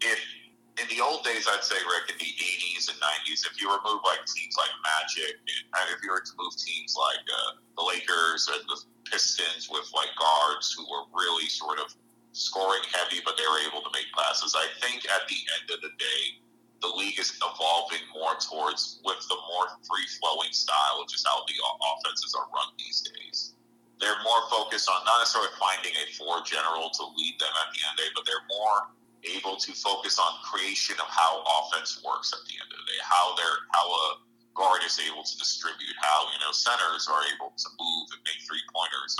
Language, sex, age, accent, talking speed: English, male, 30-49, American, 210 wpm